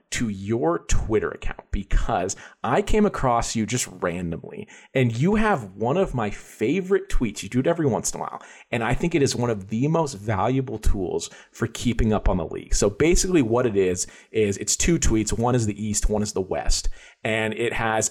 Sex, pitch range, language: male, 105-135 Hz, English